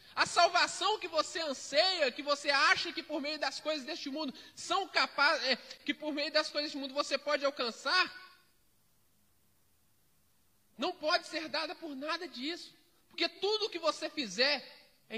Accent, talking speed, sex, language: Brazilian, 160 wpm, male, Portuguese